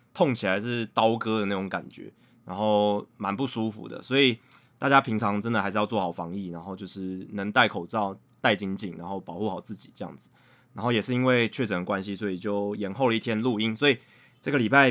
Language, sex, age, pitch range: Chinese, male, 20-39, 105-145 Hz